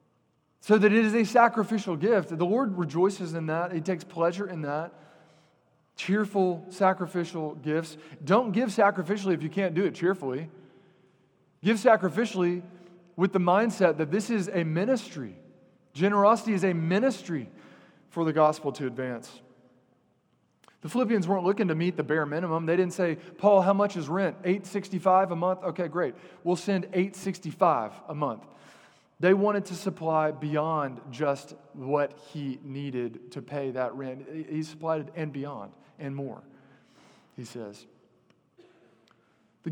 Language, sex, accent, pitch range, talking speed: English, male, American, 155-205 Hz, 150 wpm